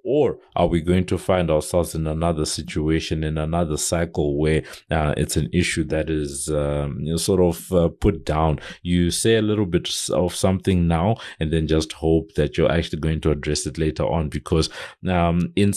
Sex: male